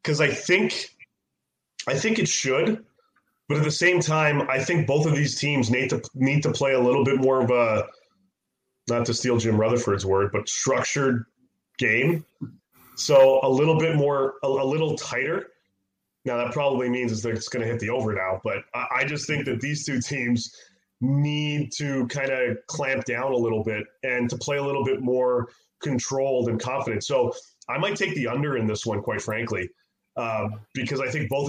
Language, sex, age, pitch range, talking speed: English, male, 20-39, 120-145 Hz, 195 wpm